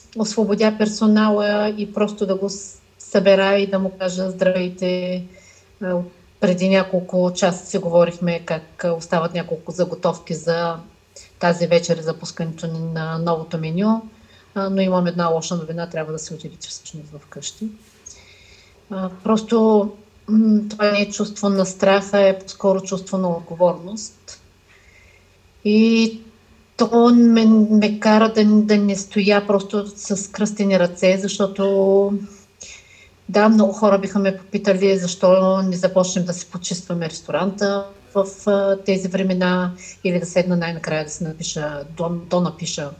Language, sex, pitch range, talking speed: Bulgarian, female, 170-205 Hz, 135 wpm